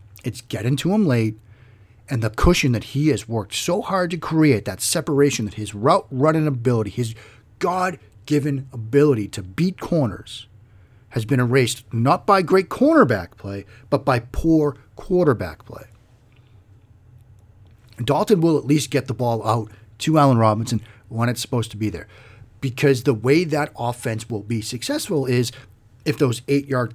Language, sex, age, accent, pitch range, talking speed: English, male, 40-59, American, 110-145 Hz, 155 wpm